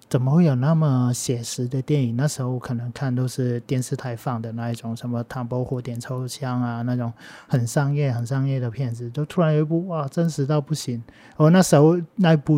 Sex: male